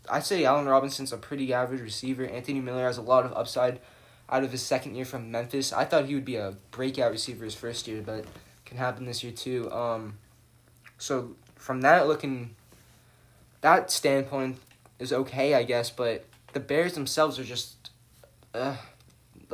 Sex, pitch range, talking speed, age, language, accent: male, 115-135 Hz, 175 wpm, 10-29, English, American